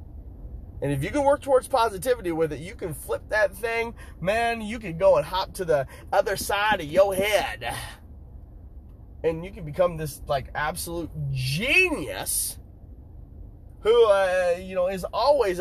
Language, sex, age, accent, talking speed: English, male, 30-49, American, 160 wpm